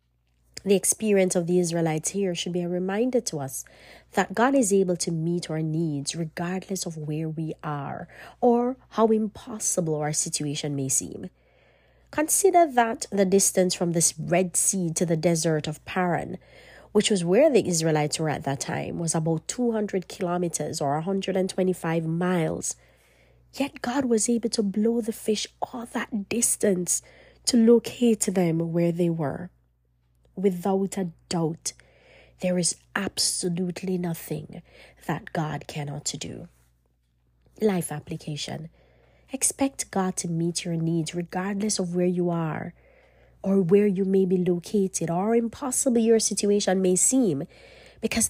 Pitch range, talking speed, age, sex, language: 160-210 Hz, 145 wpm, 30-49, female, English